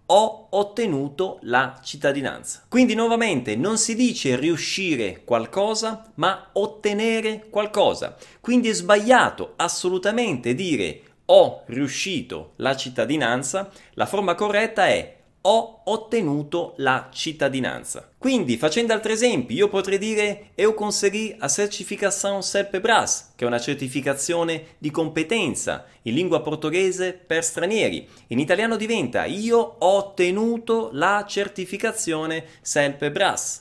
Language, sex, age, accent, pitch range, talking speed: Italian, male, 30-49, native, 160-225 Hz, 110 wpm